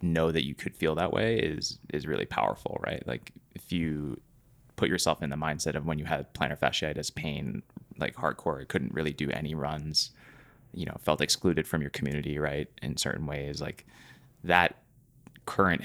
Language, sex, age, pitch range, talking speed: English, male, 20-39, 75-90 Hz, 180 wpm